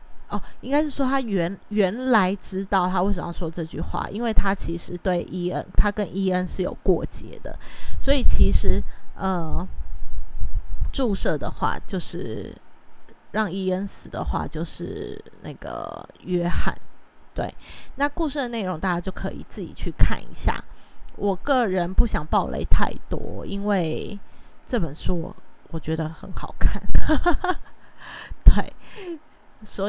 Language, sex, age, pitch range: Chinese, female, 20-39, 175-215 Hz